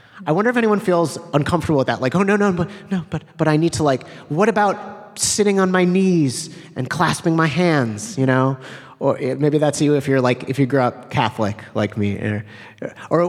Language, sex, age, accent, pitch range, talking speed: English, male, 30-49, American, 120-165 Hz, 210 wpm